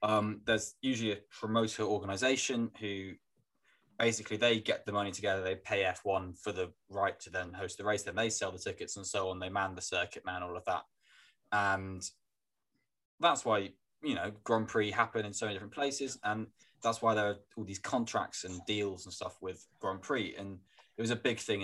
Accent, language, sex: British, English, male